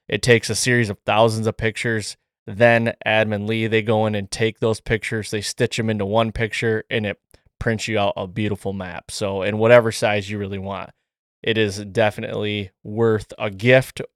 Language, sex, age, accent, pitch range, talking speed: English, male, 20-39, American, 105-125 Hz, 190 wpm